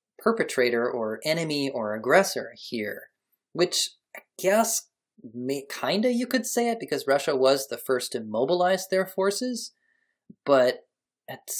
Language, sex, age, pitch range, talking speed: English, male, 30-49, 130-205 Hz, 140 wpm